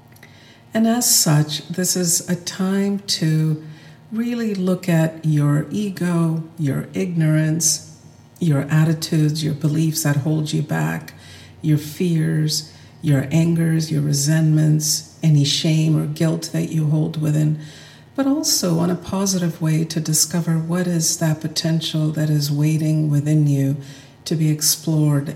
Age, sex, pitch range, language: 50-69, female, 145-175 Hz, English